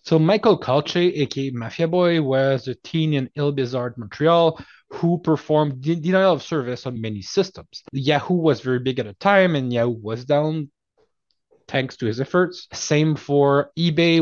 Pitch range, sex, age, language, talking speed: 125-160 Hz, male, 20-39, English, 170 wpm